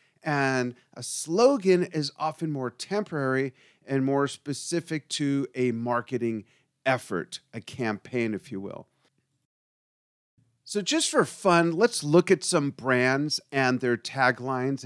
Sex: male